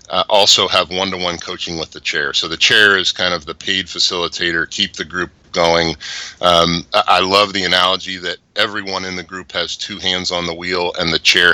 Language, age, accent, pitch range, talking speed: English, 30-49, American, 85-100 Hz, 210 wpm